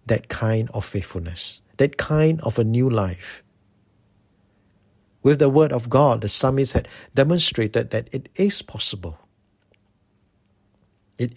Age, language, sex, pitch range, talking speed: 50-69, English, male, 100-120 Hz, 125 wpm